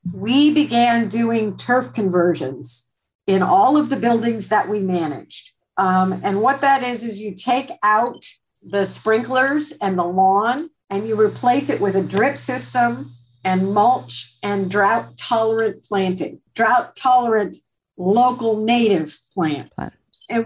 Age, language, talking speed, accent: 50-69, English, 130 wpm, American